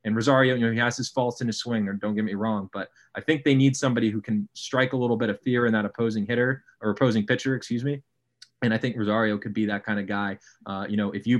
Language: English